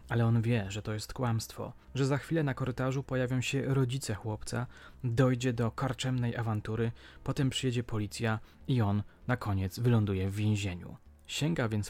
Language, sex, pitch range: Polish, male, 105-130 Hz